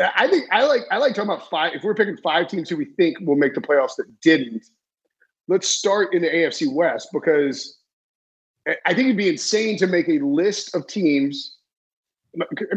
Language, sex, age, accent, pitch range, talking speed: English, male, 30-49, American, 165-240 Hz, 195 wpm